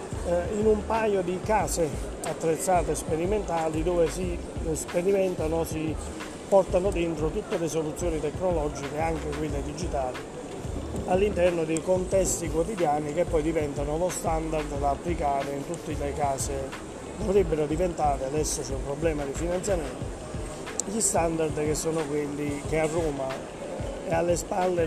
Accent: native